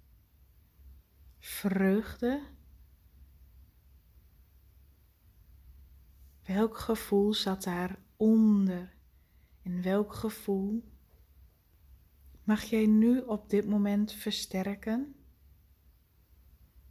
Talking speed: 55 wpm